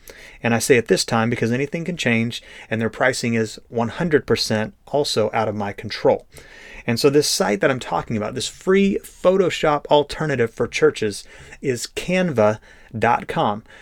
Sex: male